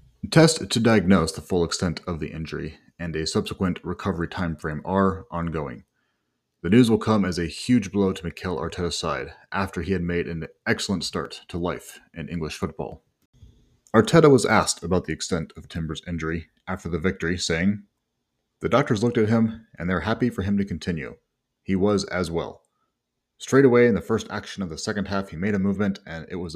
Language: English